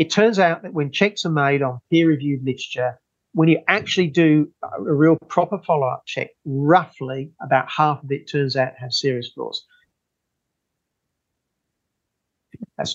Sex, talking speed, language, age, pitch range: male, 150 wpm, English, 40-59, 140-180 Hz